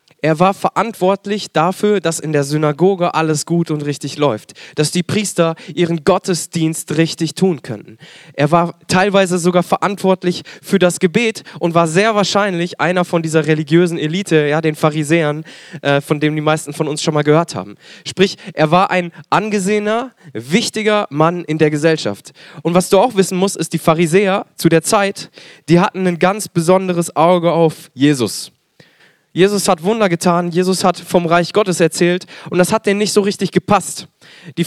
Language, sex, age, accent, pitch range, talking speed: German, male, 20-39, German, 155-190 Hz, 175 wpm